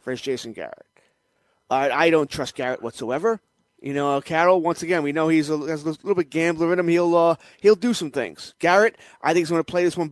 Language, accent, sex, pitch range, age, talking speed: English, American, male, 140-180 Hz, 30-49, 235 wpm